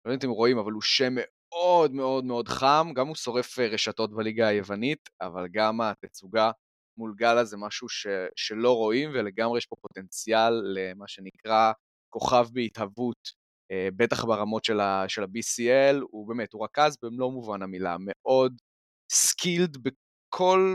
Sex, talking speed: male, 150 wpm